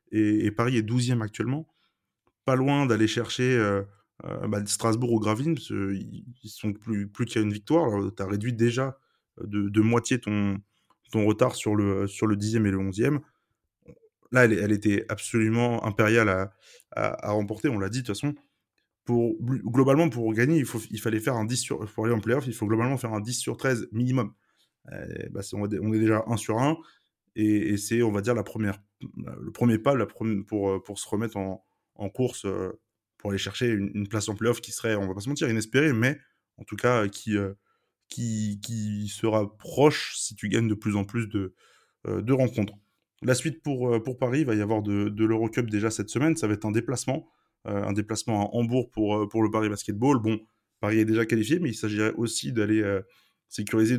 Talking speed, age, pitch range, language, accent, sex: 190 wpm, 20-39, 105-120 Hz, French, French, male